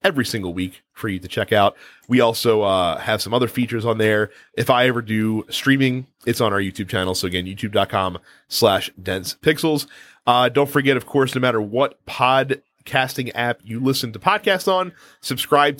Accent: American